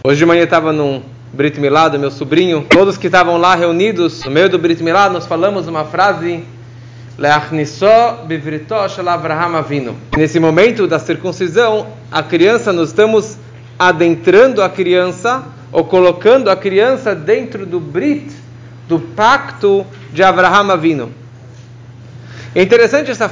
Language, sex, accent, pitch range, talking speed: English, male, Brazilian, 135-210 Hz, 130 wpm